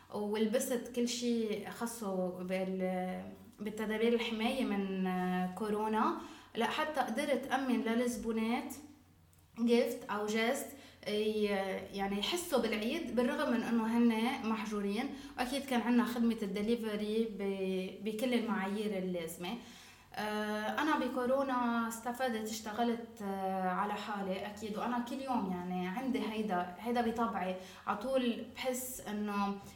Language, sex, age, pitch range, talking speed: Arabic, female, 20-39, 200-240 Hz, 105 wpm